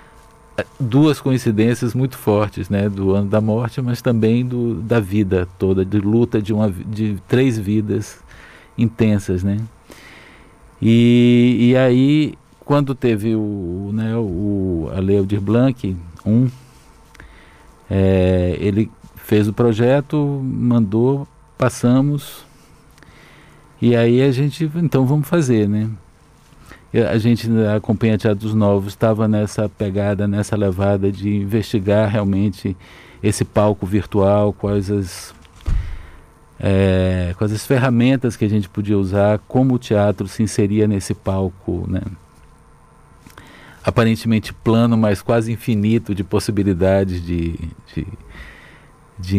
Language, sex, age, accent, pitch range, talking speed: Portuguese, male, 50-69, Brazilian, 95-115 Hz, 115 wpm